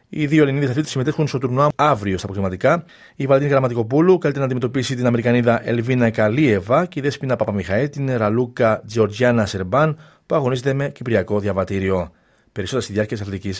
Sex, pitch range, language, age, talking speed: male, 105-140 Hz, Greek, 30-49, 165 wpm